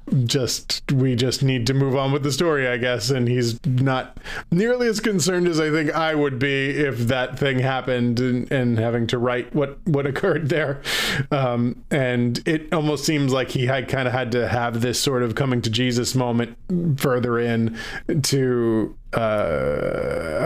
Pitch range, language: 120-140 Hz, English